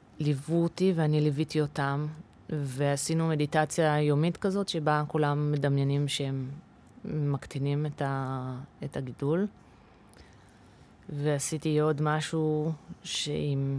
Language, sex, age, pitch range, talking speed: Hebrew, female, 30-49, 140-165 Hz, 95 wpm